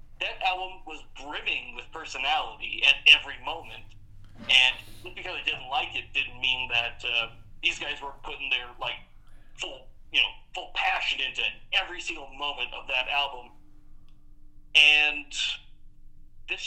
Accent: American